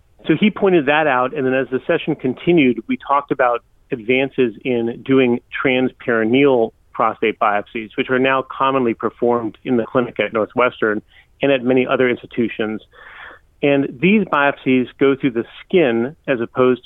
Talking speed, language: 155 wpm, English